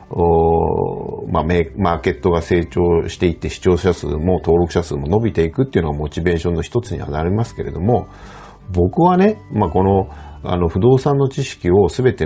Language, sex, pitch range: Japanese, male, 80-100 Hz